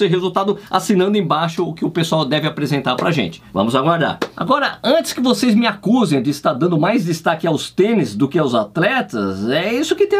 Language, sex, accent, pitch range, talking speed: Portuguese, male, Brazilian, 190-265 Hz, 205 wpm